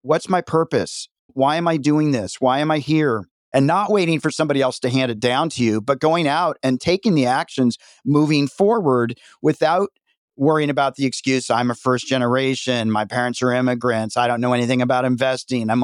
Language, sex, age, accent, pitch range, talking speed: English, male, 40-59, American, 130-155 Hz, 200 wpm